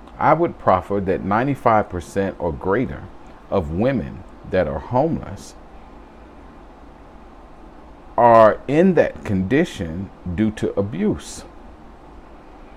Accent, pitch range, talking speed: American, 85-105 Hz, 90 wpm